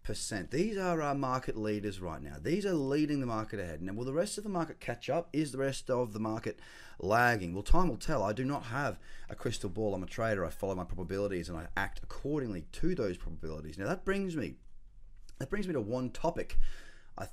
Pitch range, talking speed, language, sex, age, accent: 100-150 Hz, 225 wpm, English, male, 30-49, Australian